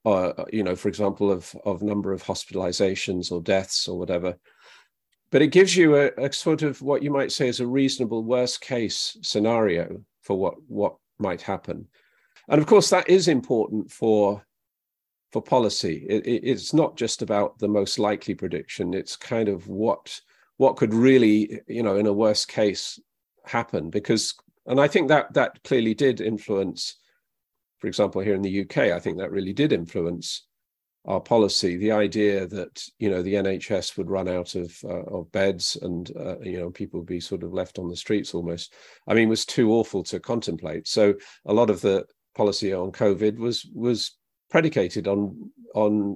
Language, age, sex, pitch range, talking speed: English, 40-59, male, 95-120 Hz, 185 wpm